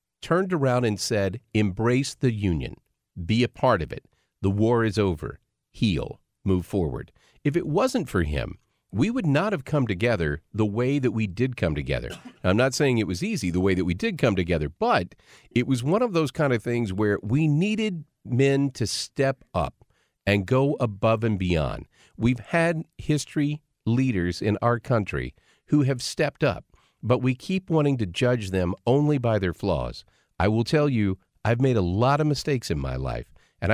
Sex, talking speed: male, 190 wpm